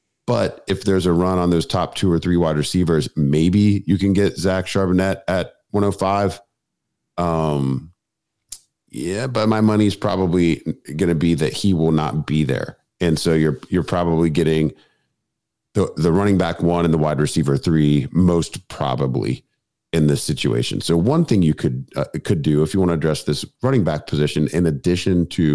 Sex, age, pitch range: male, 40-59, 75-90 Hz